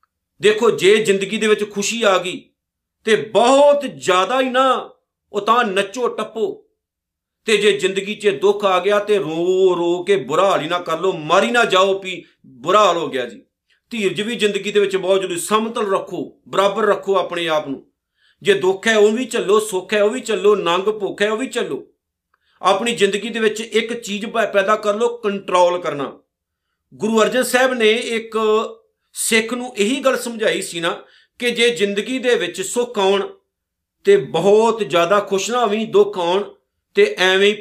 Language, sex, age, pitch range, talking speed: Punjabi, male, 50-69, 190-235 Hz, 170 wpm